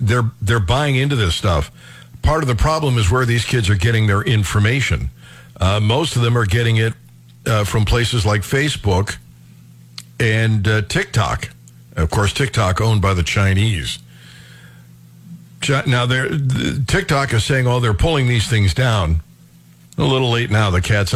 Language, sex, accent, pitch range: English, male, American, 80-130 Hz